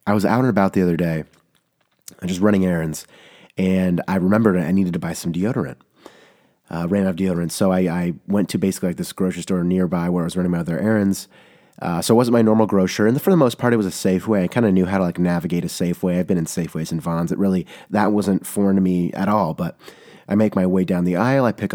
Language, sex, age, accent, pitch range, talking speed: English, male, 30-49, American, 90-105 Hz, 260 wpm